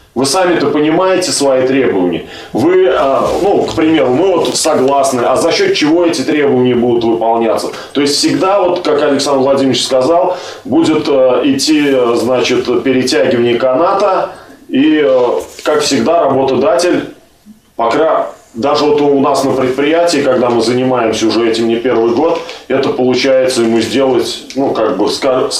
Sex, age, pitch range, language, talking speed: male, 20-39, 120-160 Hz, Russian, 140 wpm